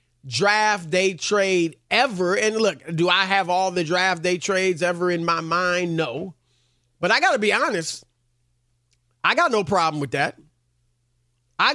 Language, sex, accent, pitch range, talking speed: English, male, American, 155-225 Hz, 160 wpm